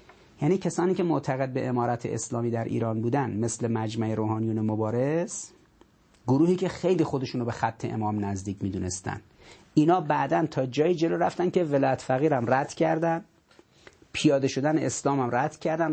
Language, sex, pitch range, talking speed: Persian, male, 115-155 Hz, 155 wpm